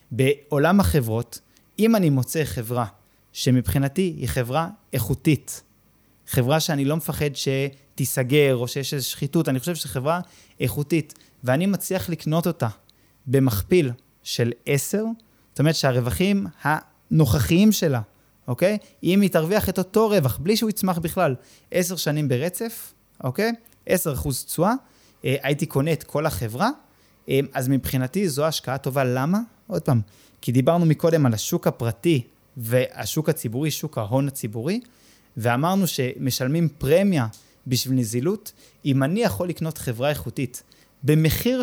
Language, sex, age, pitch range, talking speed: Hebrew, male, 20-39, 130-170 Hz, 130 wpm